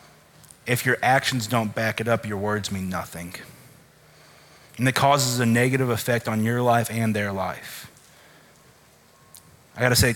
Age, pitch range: 30-49, 110-130 Hz